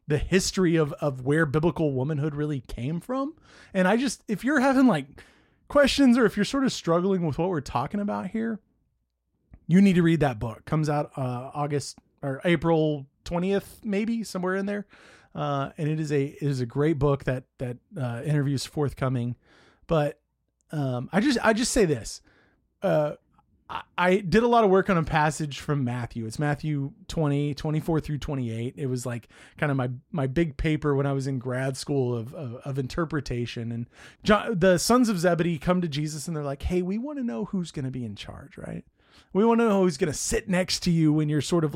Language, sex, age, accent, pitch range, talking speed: English, male, 20-39, American, 140-190 Hz, 210 wpm